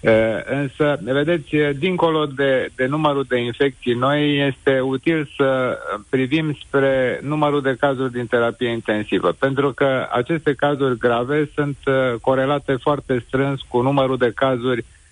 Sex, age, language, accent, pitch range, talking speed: male, 50-69, Romanian, native, 125-150 Hz, 130 wpm